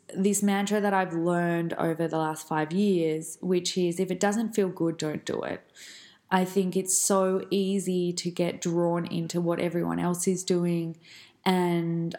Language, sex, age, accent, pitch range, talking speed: English, female, 20-39, Australian, 165-190 Hz, 170 wpm